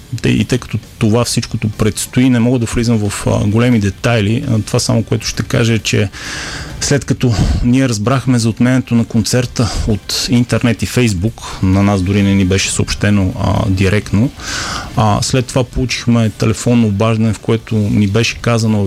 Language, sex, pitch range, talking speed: Bulgarian, male, 100-125 Hz, 160 wpm